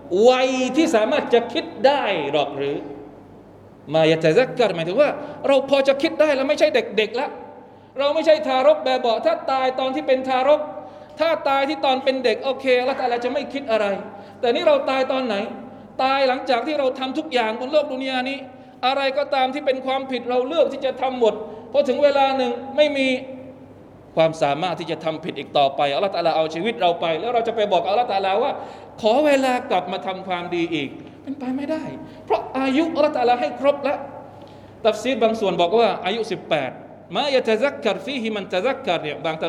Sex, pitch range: male, 180-270 Hz